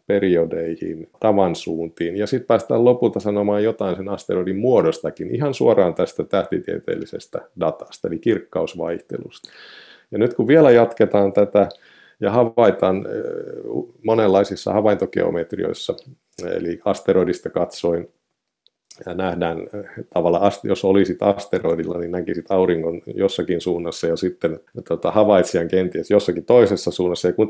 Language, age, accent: Finnish, 50-69, native